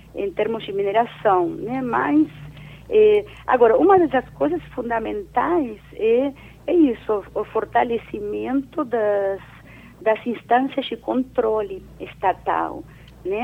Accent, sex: Brazilian, female